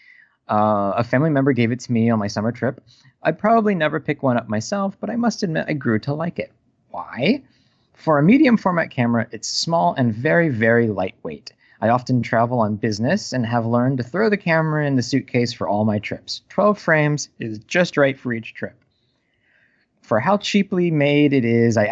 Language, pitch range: English, 115-150 Hz